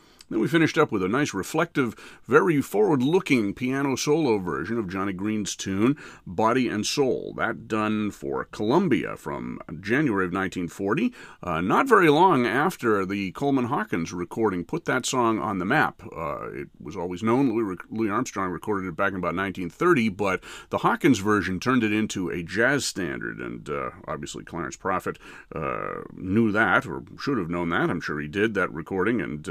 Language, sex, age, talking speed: English, male, 40-59, 180 wpm